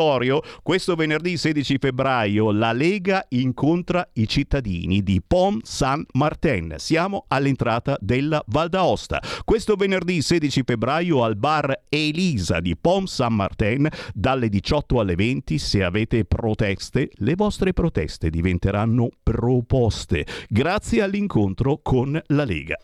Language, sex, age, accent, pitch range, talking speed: Italian, male, 50-69, native, 100-150 Hz, 120 wpm